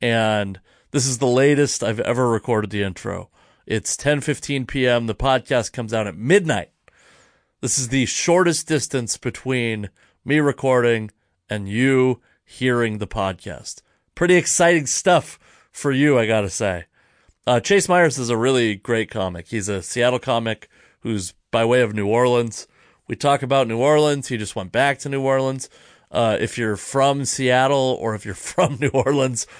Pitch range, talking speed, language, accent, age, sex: 110-140 Hz, 165 wpm, English, American, 30-49, male